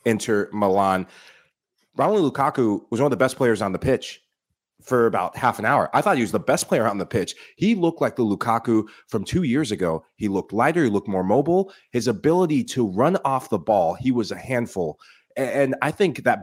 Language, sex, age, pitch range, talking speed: English, male, 30-49, 100-125 Hz, 215 wpm